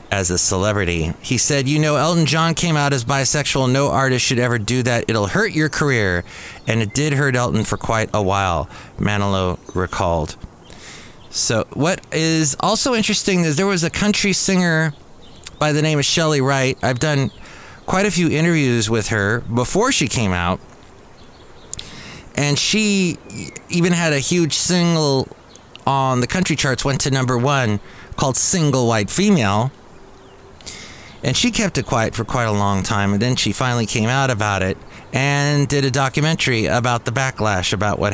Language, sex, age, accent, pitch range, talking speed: English, male, 30-49, American, 105-150 Hz, 170 wpm